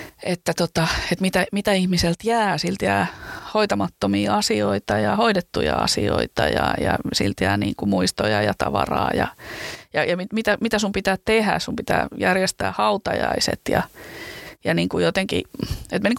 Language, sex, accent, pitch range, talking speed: Finnish, female, native, 165-215 Hz, 155 wpm